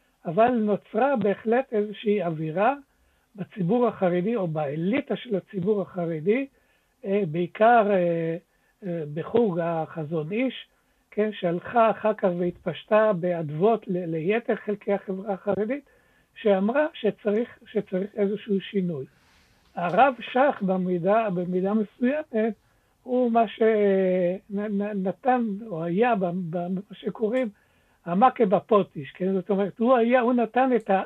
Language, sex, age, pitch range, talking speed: Hebrew, male, 60-79, 185-230 Hz, 105 wpm